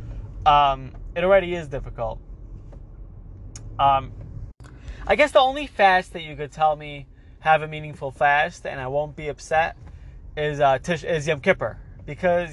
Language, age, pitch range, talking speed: English, 20-39, 125-190 Hz, 155 wpm